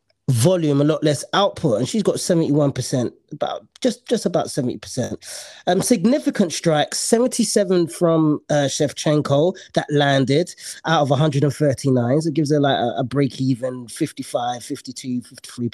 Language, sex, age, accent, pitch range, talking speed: English, male, 30-49, British, 150-210 Hz, 155 wpm